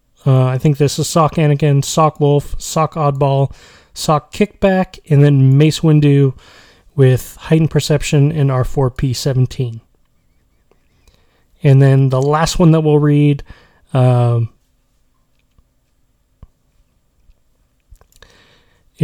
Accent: American